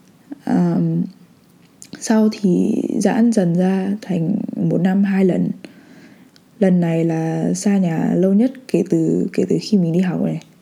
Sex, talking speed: female, 155 wpm